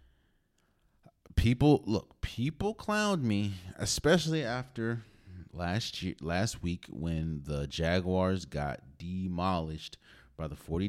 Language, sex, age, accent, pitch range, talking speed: English, male, 30-49, American, 80-105 Hz, 100 wpm